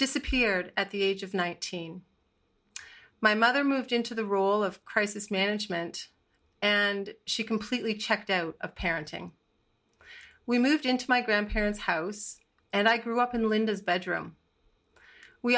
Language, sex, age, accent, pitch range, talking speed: English, female, 40-59, American, 195-235 Hz, 140 wpm